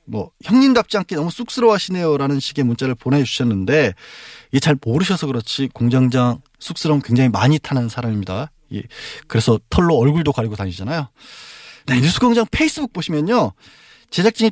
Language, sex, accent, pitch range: Korean, male, native, 115-165 Hz